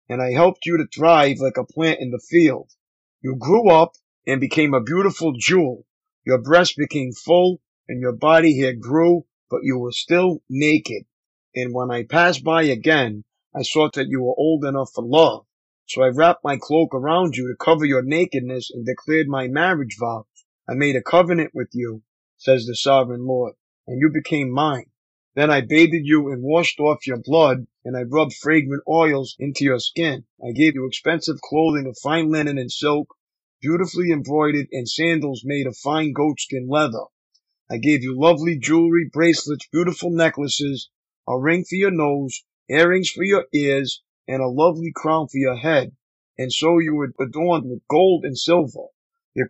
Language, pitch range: English, 130-165 Hz